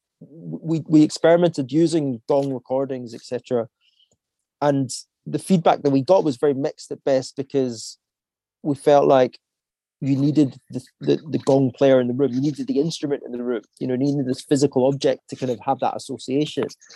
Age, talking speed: 30-49, 180 wpm